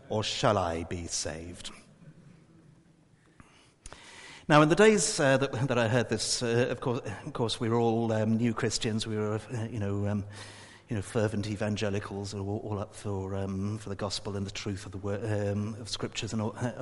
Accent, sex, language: British, male, English